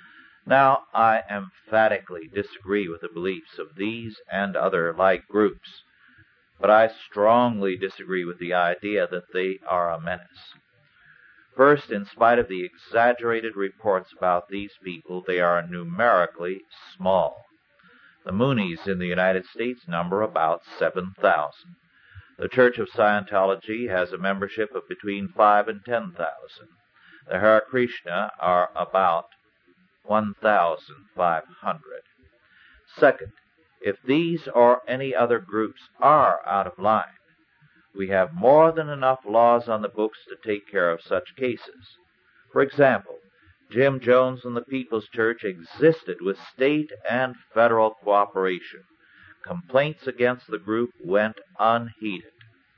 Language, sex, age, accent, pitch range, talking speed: English, male, 50-69, American, 95-125 Hz, 125 wpm